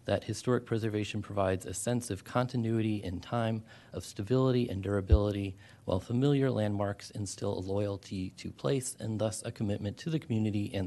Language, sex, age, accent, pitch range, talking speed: English, male, 30-49, American, 95-115 Hz, 165 wpm